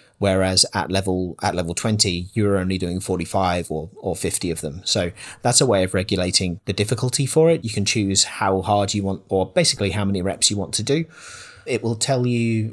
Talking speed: 210 wpm